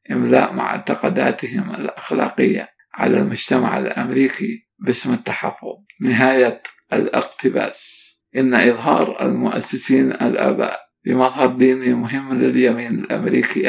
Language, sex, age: English, male, 50-69